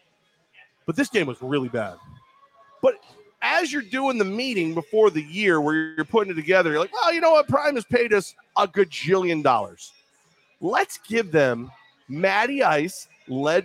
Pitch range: 170-275 Hz